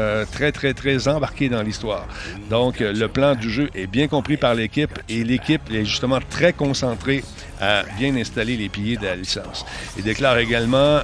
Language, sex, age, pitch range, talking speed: French, male, 50-69, 105-130 Hz, 190 wpm